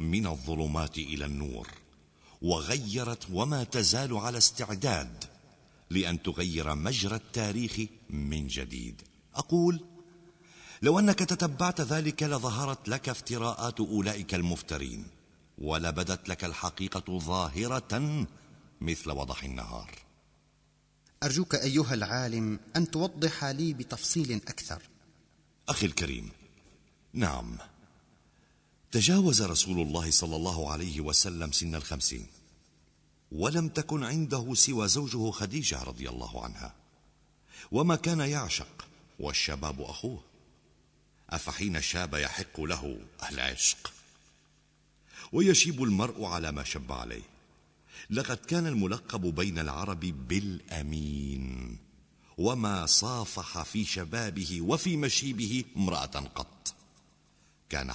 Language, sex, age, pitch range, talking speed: Arabic, male, 50-69, 80-125 Hz, 95 wpm